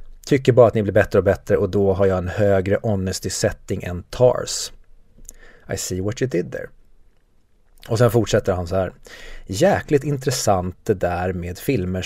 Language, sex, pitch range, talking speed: Swedish, male, 95-120 Hz, 175 wpm